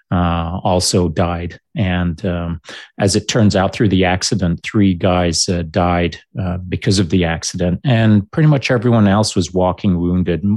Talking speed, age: 165 wpm, 30-49